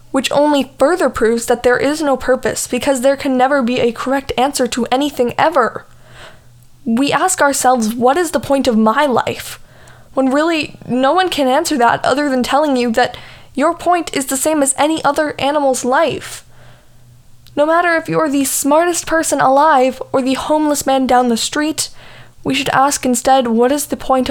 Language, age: English, 10-29